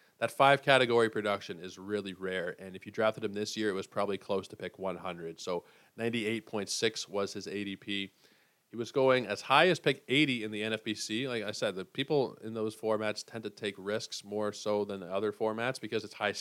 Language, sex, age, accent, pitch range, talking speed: English, male, 20-39, American, 100-115 Hz, 205 wpm